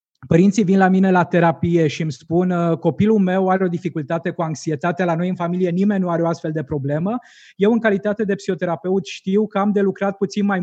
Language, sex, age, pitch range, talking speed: Romanian, male, 20-39, 175-220 Hz, 220 wpm